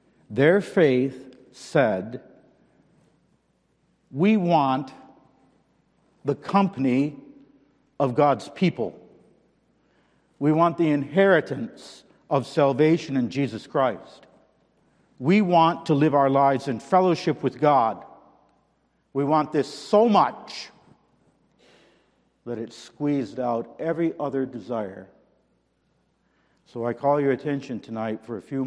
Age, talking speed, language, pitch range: 50-69, 105 wpm, English, 120-155 Hz